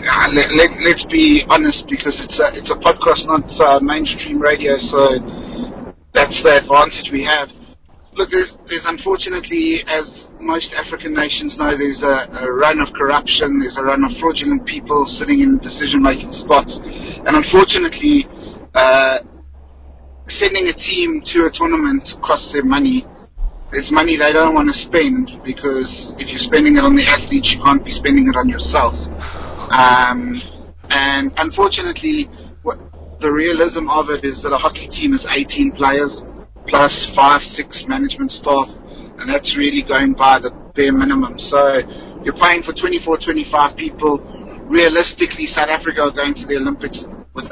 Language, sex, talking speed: English, male, 160 wpm